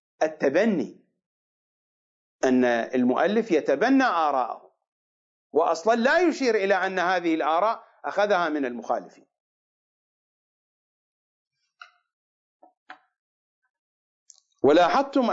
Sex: male